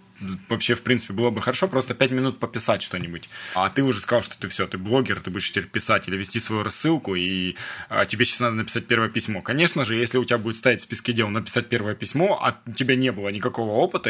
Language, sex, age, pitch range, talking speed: Russian, male, 20-39, 110-130 Hz, 235 wpm